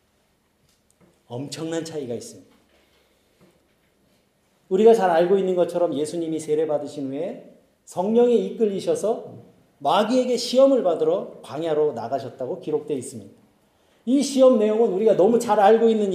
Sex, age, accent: male, 40-59, native